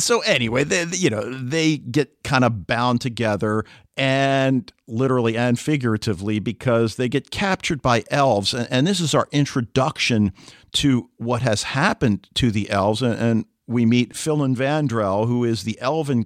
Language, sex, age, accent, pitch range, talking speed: English, male, 50-69, American, 115-145 Hz, 155 wpm